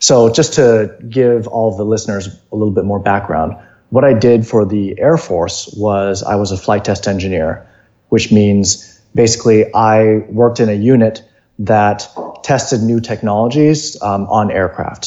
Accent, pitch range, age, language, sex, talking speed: American, 100-120 Hz, 30-49, English, male, 165 wpm